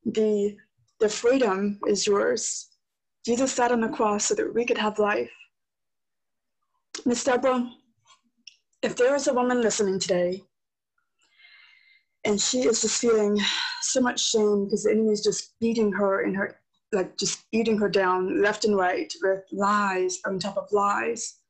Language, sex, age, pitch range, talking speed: English, female, 20-39, 200-240 Hz, 155 wpm